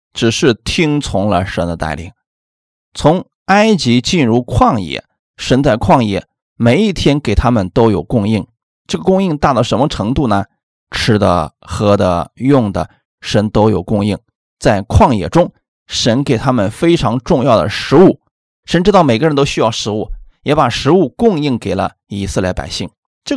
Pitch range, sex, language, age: 95-140 Hz, male, Chinese, 20-39